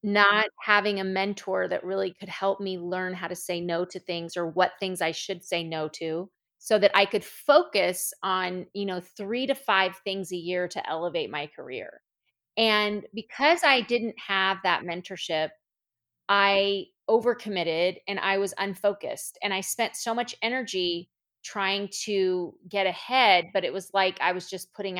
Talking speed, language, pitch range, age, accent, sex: 175 wpm, English, 180-215 Hz, 30-49, American, female